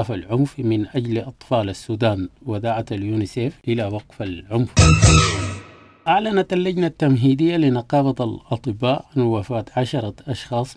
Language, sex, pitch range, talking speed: English, male, 110-130 Hz, 110 wpm